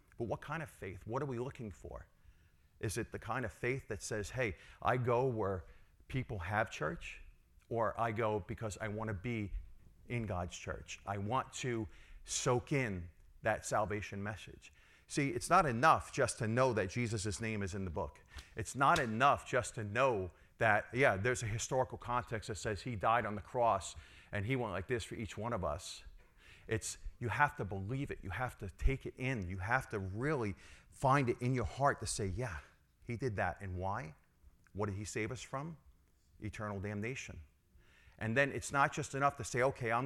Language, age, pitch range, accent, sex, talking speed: English, 40-59, 95-125 Hz, American, male, 200 wpm